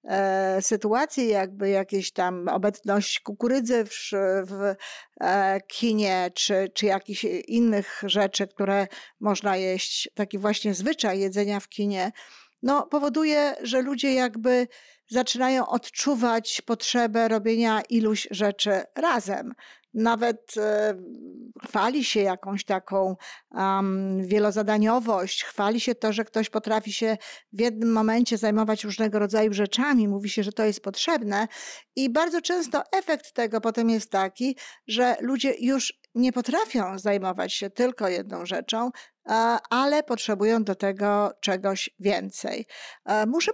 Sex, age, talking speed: female, 50-69, 120 wpm